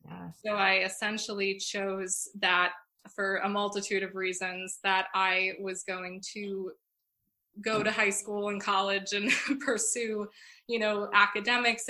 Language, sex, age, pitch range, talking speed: English, female, 20-39, 185-200 Hz, 130 wpm